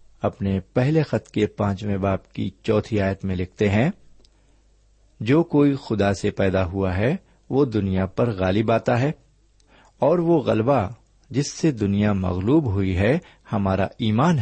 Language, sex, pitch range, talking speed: Urdu, male, 95-130 Hz, 150 wpm